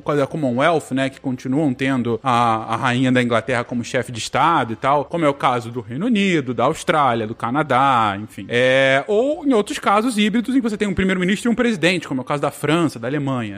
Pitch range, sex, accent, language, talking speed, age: 125-175 Hz, male, Brazilian, Portuguese, 225 wpm, 20-39